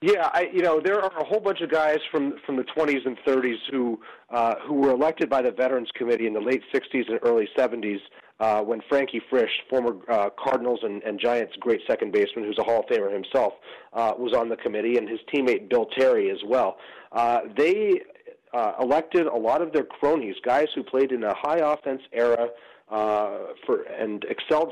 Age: 40-59